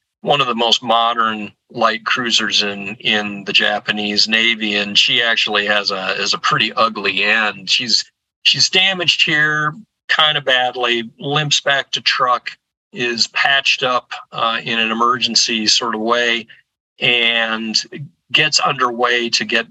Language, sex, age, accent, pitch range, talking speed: English, male, 40-59, American, 105-125 Hz, 145 wpm